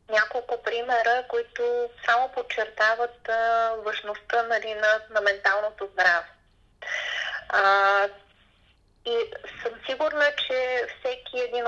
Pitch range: 220-275 Hz